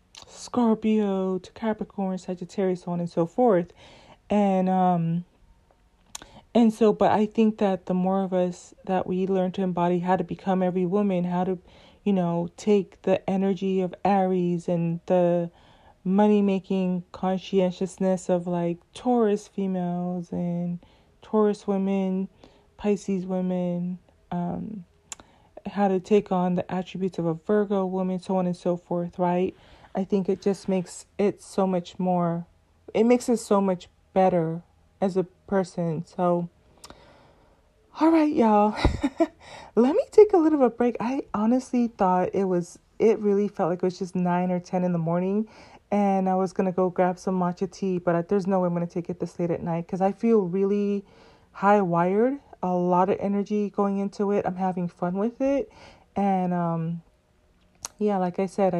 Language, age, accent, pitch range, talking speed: English, 20-39, American, 180-205 Hz, 165 wpm